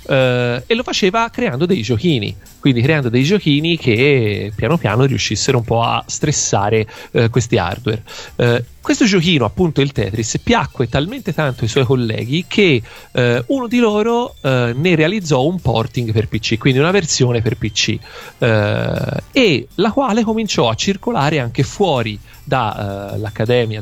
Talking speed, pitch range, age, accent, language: 140 wpm, 115-160 Hz, 40-59, native, Italian